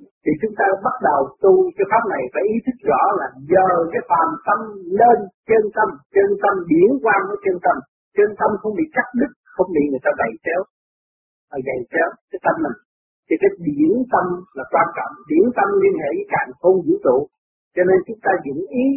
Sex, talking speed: male, 210 wpm